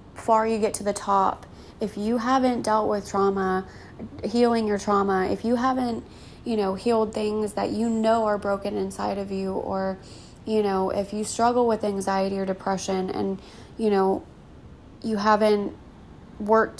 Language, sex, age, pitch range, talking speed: English, female, 20-39, 200-225 Hz, 165 wpm